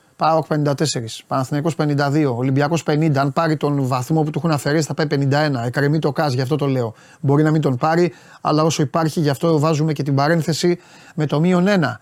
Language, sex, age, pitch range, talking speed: Greek, male, 30-49, 150-210 Hz, 205 wpm